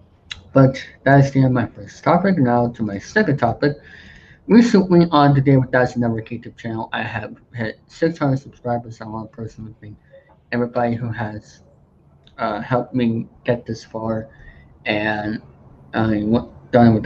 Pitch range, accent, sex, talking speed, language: 110-130 Hz, American, male, 165 wpm, English